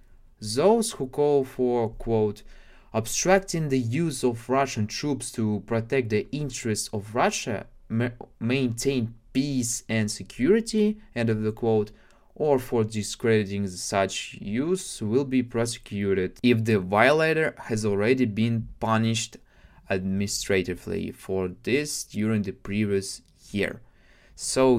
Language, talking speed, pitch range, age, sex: Russian, 115 wpm, 105-130 Hz, 20-39, male